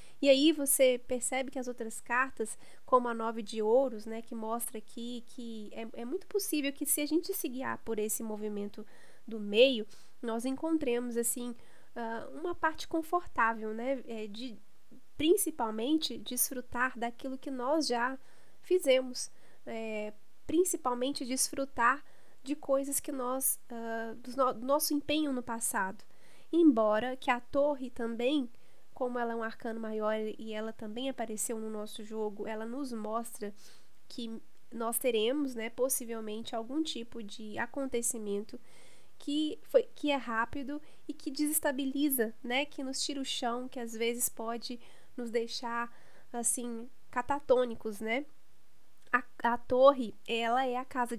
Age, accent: 10-29, Brazilian